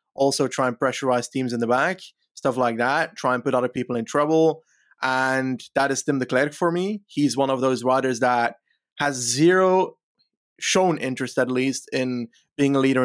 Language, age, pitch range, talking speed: English, 20-39, 125-150 Hz, 195 wpm